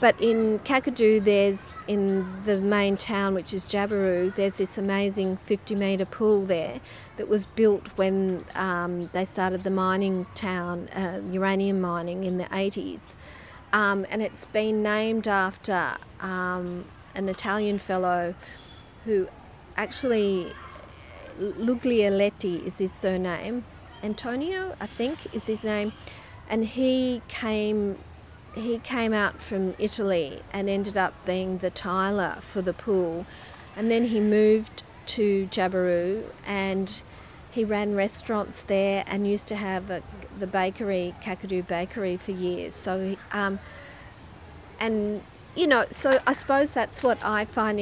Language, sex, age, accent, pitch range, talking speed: English, female, 40-59, Australian, 185-215 Hz, 135 wpm